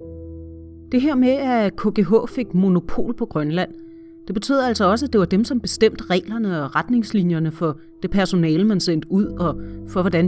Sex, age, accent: female, 30-49, native